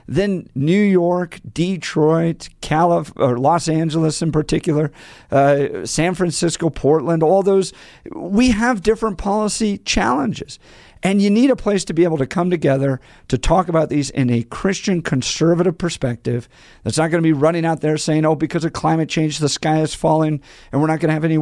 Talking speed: 185 wpm